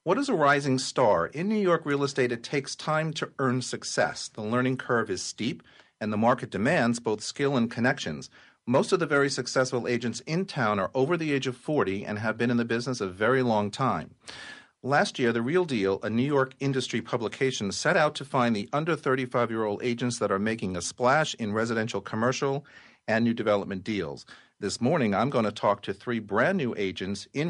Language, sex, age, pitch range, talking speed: English, male, 40-59, 105-135 Hz, 205 wpm